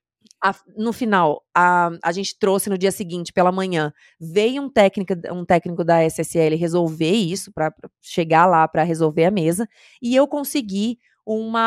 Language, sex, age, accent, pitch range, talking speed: Portuguese, female, 20-39, Brazilian, 180-230 Hz, 165 wpm